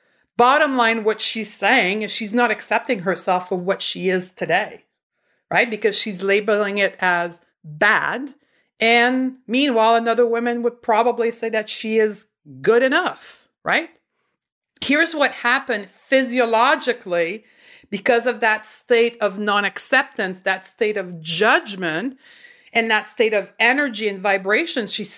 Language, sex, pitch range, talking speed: English, female, 200-245 Hz, 135 wpm